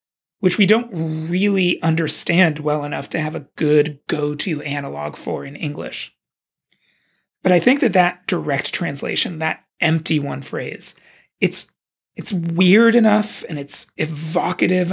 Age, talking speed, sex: 30-49, 135 wpm, male